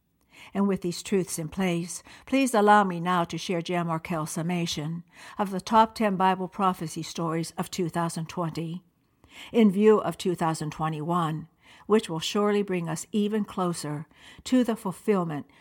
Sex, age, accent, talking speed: female, 60-79, American, 145 wpm